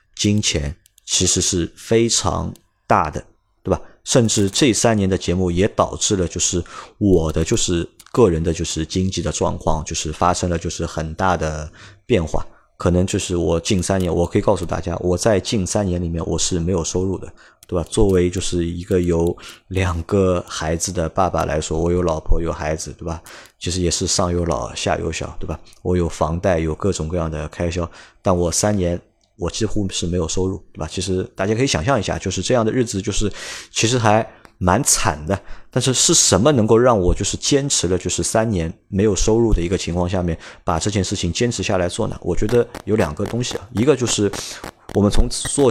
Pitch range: 85-105 Hz